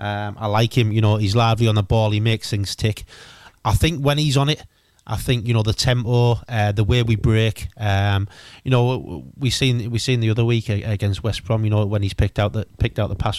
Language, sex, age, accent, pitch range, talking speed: English, male, 30-49, British, 105-120 Hz, 250 wpm